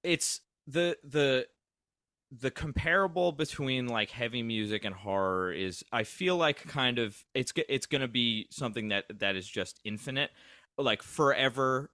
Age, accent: 20-39, American